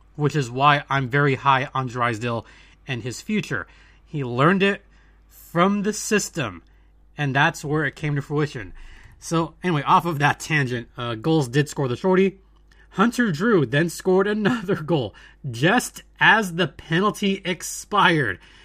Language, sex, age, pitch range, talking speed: English, male, 30-49, 140-185 Hz, 150 wpm